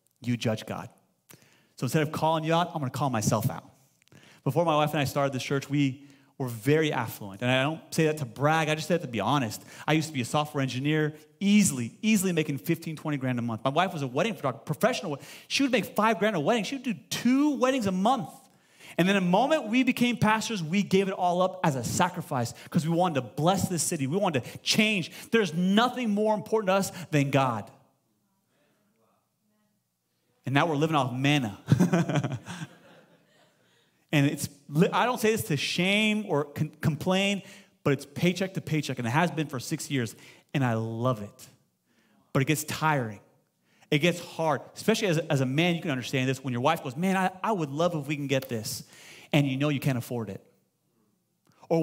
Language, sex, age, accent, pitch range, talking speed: English, male, 30-49, American, 135-190 Hz, 210 wpm